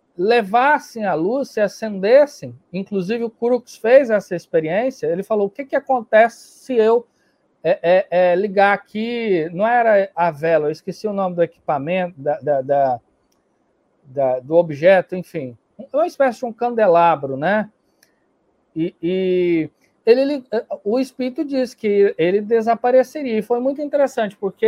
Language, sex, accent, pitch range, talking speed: Portuguese, male, Brazilian, 180-245 Hz, 150 wpm